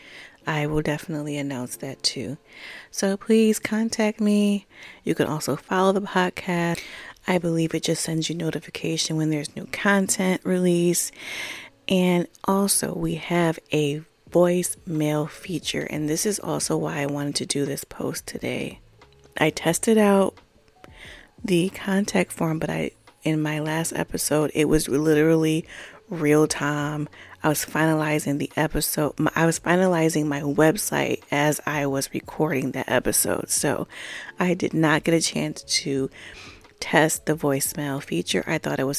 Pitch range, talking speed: 145-185 Hz, 150 wpm